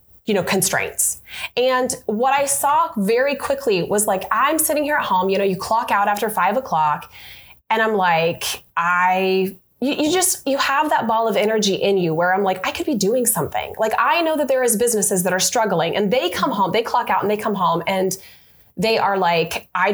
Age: 20-39